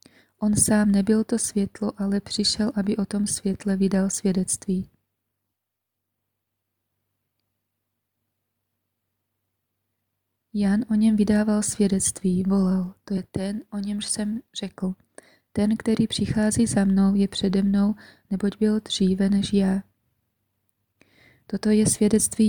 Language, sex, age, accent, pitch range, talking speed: Czech, female, 20-39, native, 185-210 Hz, 110 wpm